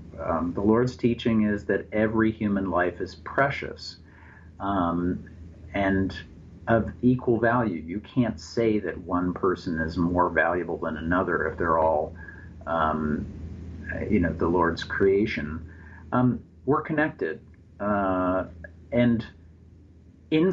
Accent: American